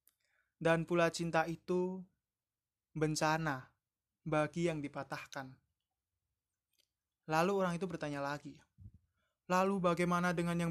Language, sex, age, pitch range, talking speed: Indonesian, male, 20-39, 130-175 Hz, 95 wpm